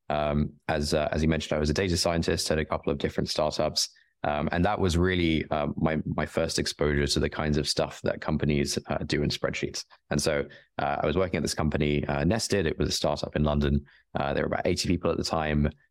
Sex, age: male, 20-39